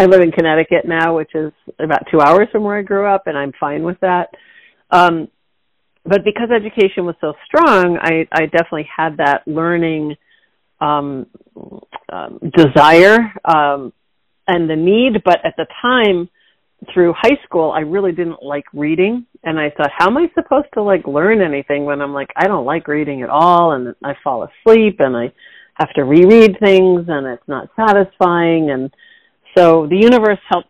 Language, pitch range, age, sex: English, 150-185 Hz, 50-69, female